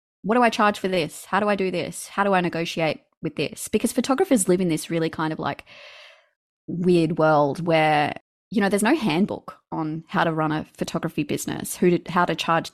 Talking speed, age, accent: 215 wpm, 20-39, Australian